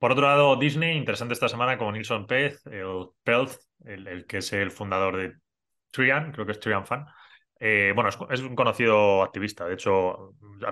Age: 20-39